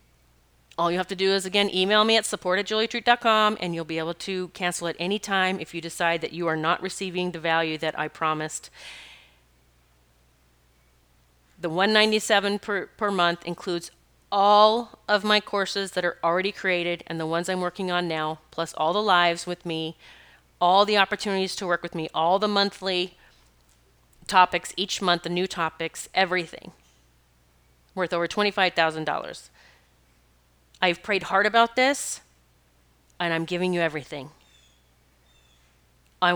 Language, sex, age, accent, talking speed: English, female, 40-59, American, 155 wpm